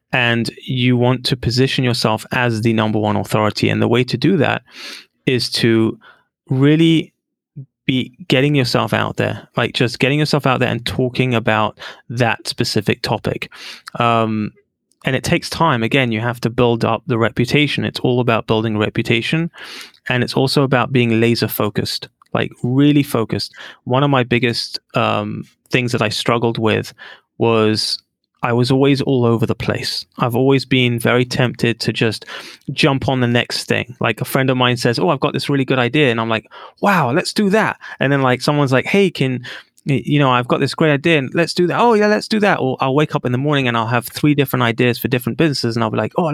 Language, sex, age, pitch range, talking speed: English, male, 20-39, 115-145 Hz, 205 wpm